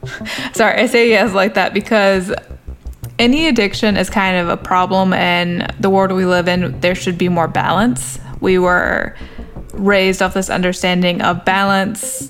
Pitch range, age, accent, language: 175-205 Hz, 20-39, American, English